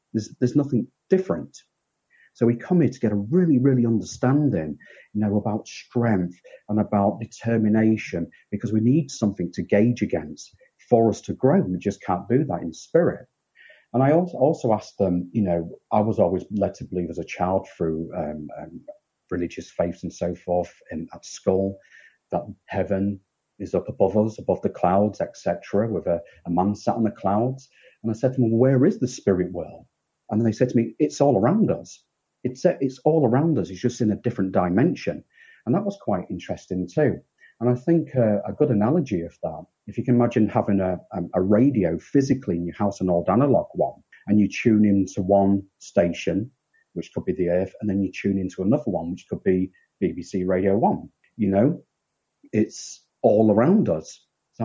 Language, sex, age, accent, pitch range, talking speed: English, male, 40-59, British, 95-125 Hz, 195 wpm